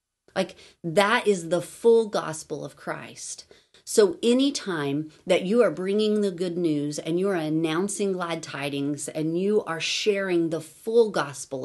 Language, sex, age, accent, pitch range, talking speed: English, female, 40-59, American, 160-210 Hz, 155 wpm